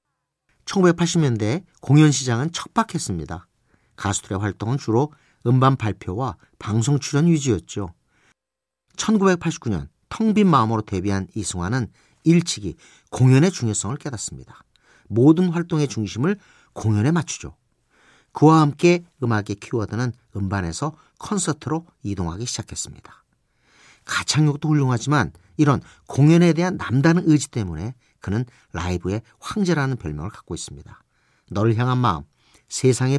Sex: male